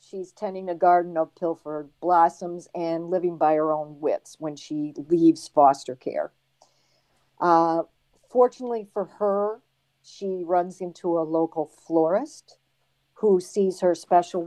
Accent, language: American, English